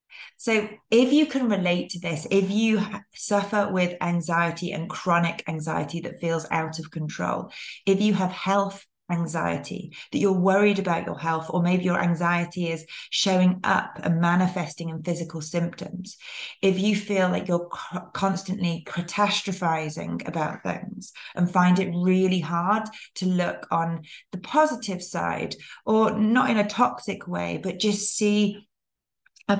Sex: female